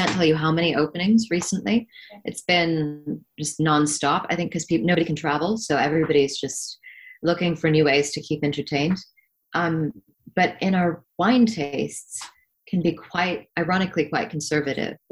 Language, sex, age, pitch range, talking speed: English, female, 30-49, 145-180 Hz, 160 wpm